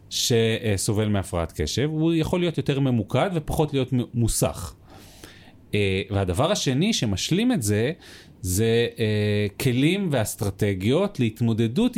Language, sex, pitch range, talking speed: Hebrew, male, 105-155 Hz, 100 wpm